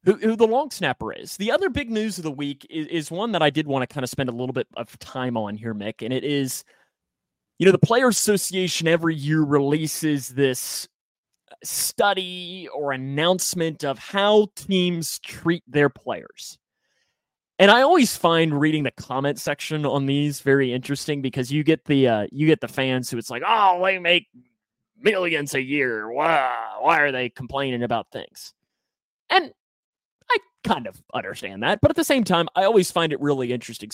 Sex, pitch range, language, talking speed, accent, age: male, 140-185 Hz, English, 185 wpm, American, 30-49